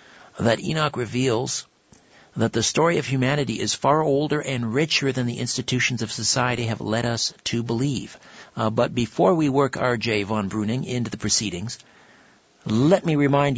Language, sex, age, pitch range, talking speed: English, male, 50-69, 110-145 Hz, 165 wpm